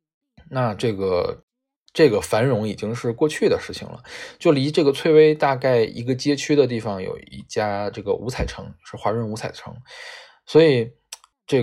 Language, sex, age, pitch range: Chinese, male, 20-39, 110-165 Hz